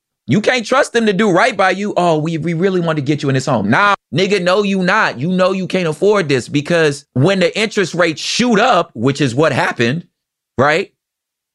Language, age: English, 30-49